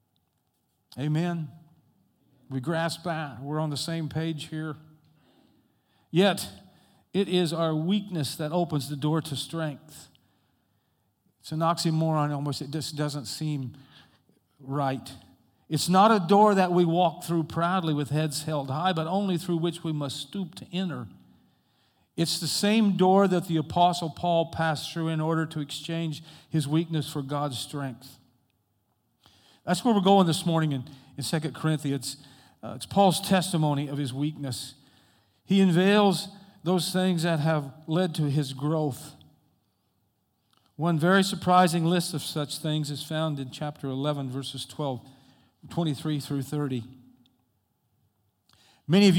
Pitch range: 135-170 Hz